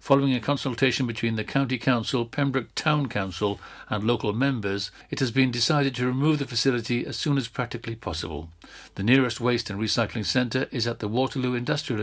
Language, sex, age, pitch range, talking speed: English, male, 60-79, 110-140 Hz, 185 wpm